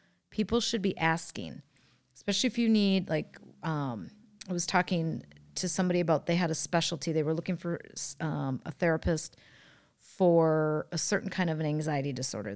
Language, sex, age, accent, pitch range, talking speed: English, female, 40-59, American, 155-195 Hz, 165 wpm